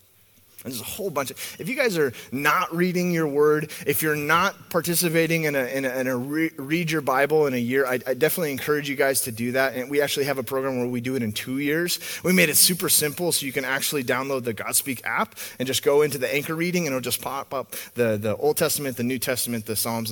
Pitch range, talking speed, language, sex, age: 125-190 Hz, 255 wpm, English, male, 30-49